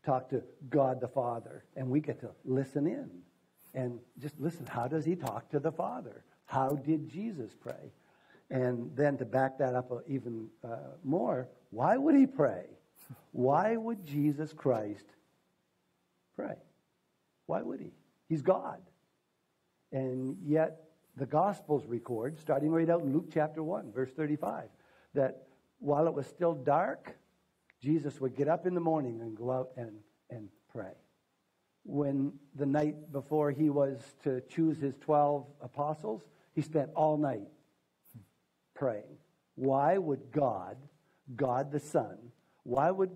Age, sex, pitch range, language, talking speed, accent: 60-79, male, 130-160 Hz, English, 145 wpm, American